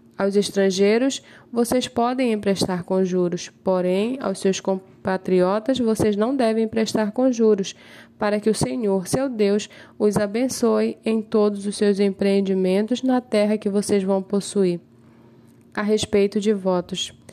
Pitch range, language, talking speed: 190-235 Hz, Portuguese, 140 wpm